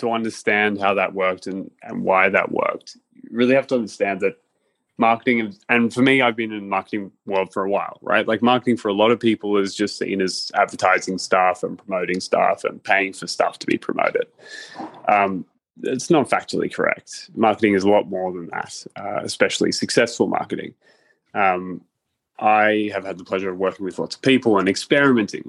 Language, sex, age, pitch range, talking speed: English, male, 20-39, 95-115 Hz, 200 wpm